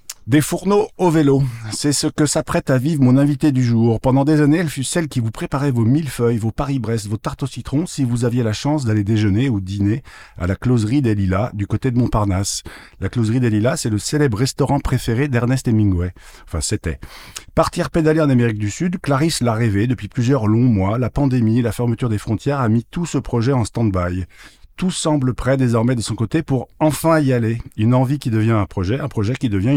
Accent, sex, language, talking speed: French, male, French, 220 wpm